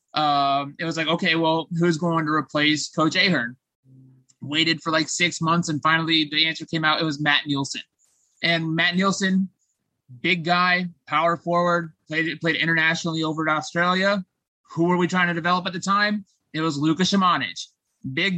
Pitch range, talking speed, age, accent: 150-175 Hz, 175 wpm, 20-39, American